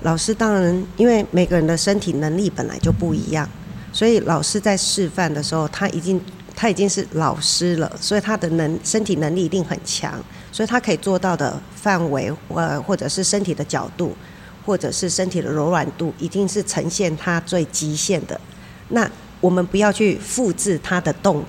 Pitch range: 155-195 Hz